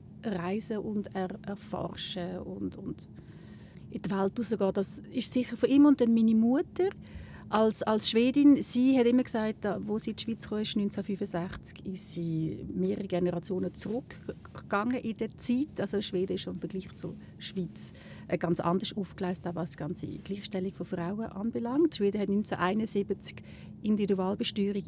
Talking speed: 155 wpm